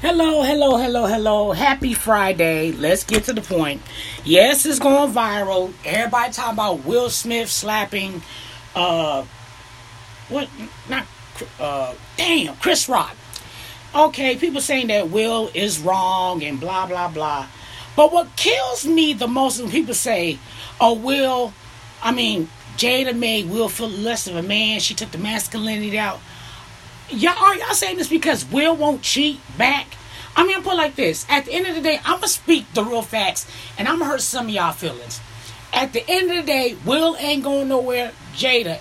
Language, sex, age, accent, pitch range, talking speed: English, female, 30-49, American, 195-290 Hz, 170 wpm